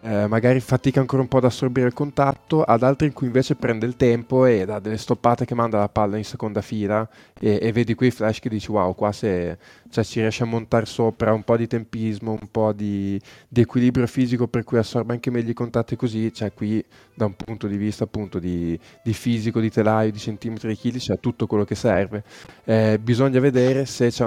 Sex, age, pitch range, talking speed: male, 20-39, 105-120 Hz, 225 wpm